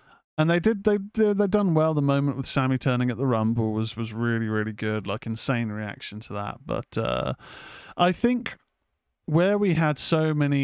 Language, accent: English, British